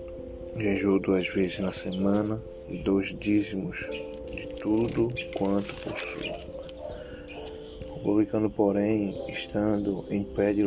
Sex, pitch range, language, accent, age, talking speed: male, 85-105 Hz, Portuguese, Brazilian, 20-39, 100 wpm